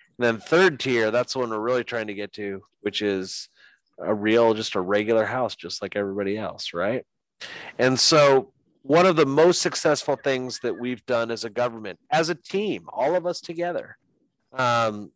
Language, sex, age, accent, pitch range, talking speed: English, male, 30-49, American, 110-140 Hz, 180 wpm